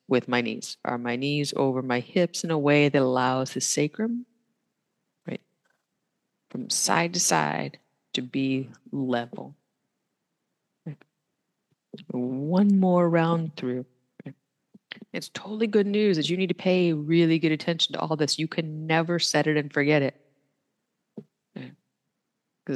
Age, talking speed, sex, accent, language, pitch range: 30-49, 135 wpm, female, American, English, 145-195 Hz